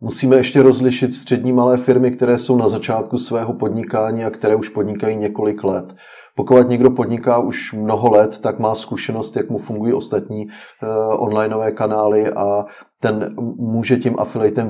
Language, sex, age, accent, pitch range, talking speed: Czech, male, 30-49, native, 100-110 Hz, 155 wpm